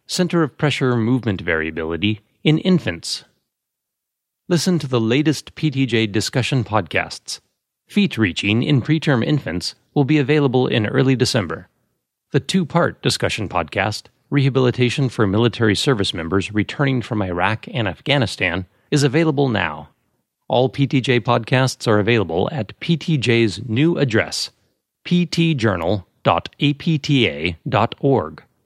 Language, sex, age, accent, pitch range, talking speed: English, male, 30-49, American, 110-145 Hz, 110 wpm